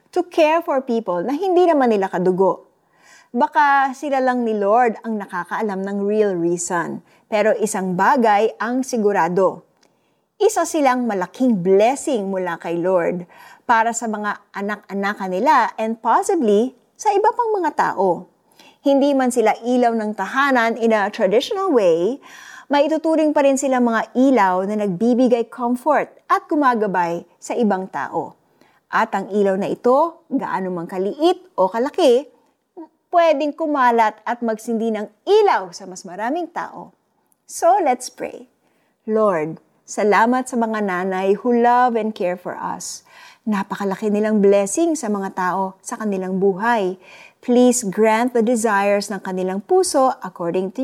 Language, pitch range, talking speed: Filipino, 195-275 Hz, 140 wpm